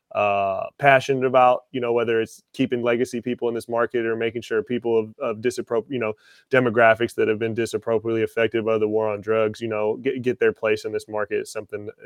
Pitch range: 110-135 Hz